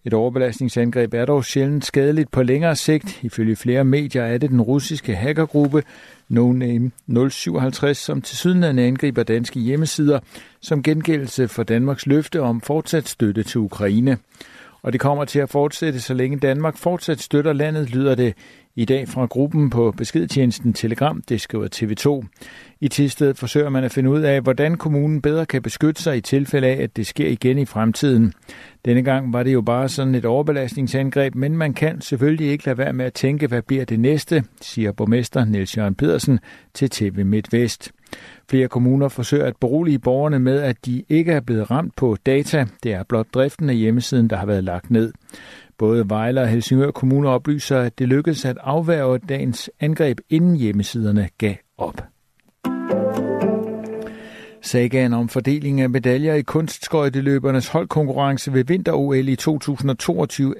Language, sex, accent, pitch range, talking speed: Danish, male, native, 120-145 Hz, 165 wpm